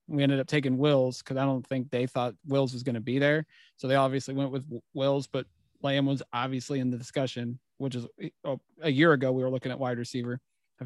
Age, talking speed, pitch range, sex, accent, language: 30-49, 230 wpm, 130-145 Hz, male, American, English